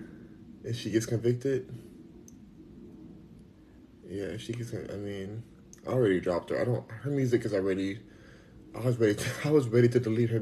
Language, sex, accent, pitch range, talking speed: English, male, American, 105-120 Hz, 165 wpm